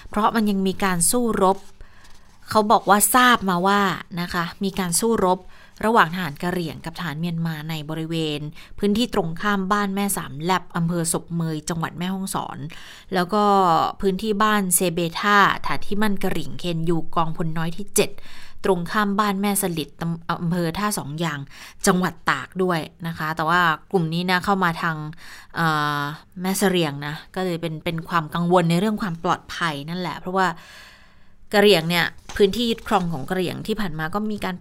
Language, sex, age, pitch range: Thai, female, 20-39, 165-200 Hz